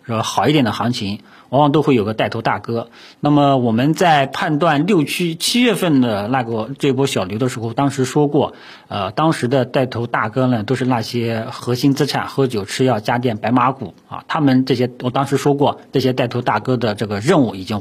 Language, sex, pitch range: Chinese, male, 110-140 Hz